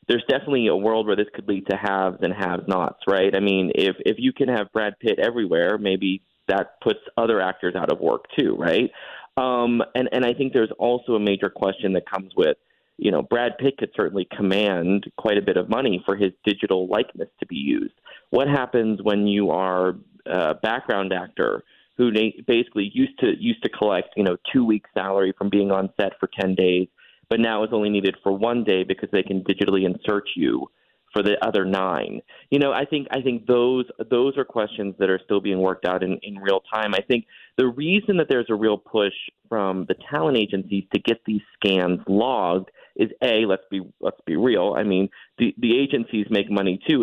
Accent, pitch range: American, 95-120 Hz